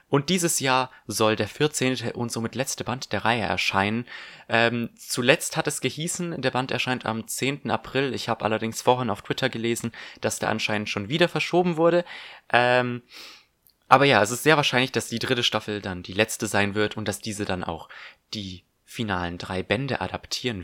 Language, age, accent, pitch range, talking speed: German, 20-39, German, 105-130 Hz, 185 wpm